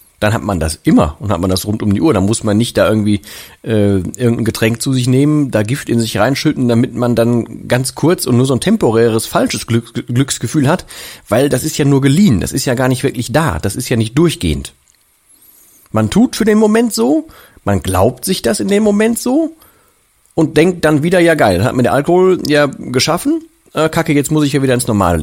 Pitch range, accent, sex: 110-155 Hz, German, male